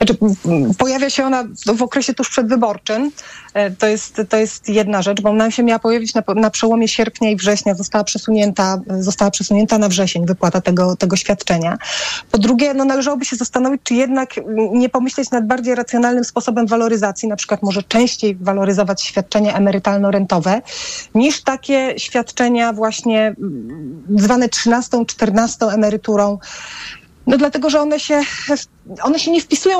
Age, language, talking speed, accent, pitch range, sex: 30-49, Polish, 150 wpm, native, 210-255 Hz, female